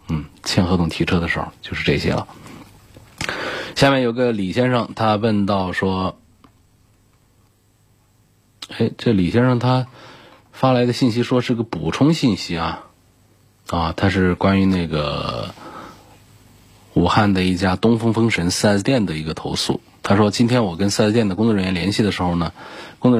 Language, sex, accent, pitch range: Chinese, male, native, 90-115 Hz